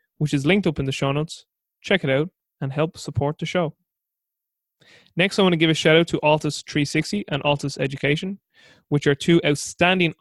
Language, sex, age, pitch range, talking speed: English, male, 20-39, 140-170 Hz, 200 wpm